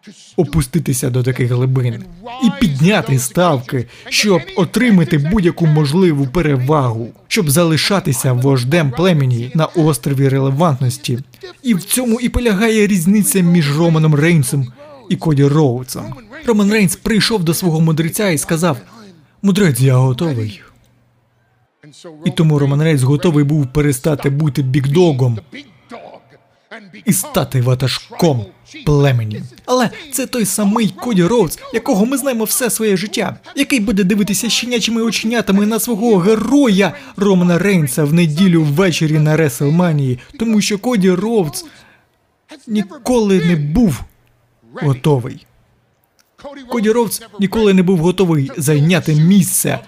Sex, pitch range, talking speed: male, 145-210 Hz, 120 wpm